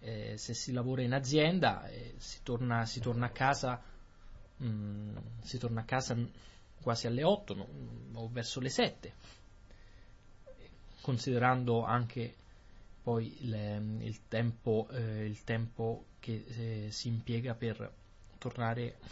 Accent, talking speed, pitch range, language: native, 130 wpm, 110-135 Hz, Italian